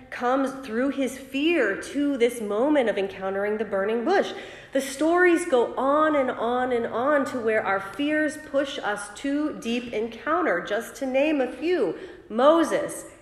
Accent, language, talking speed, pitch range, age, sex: American, English, 160 wpm, 230-305 Hz, 40-59, female